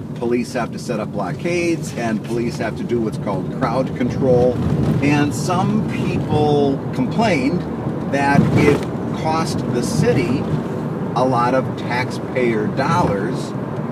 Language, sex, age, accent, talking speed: English, male, 40-59, American, 125 wpm